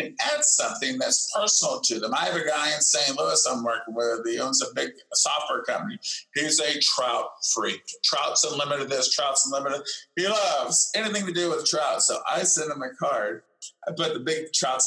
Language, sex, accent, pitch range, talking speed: English, male, American, 130-210 Hz, 200 wpm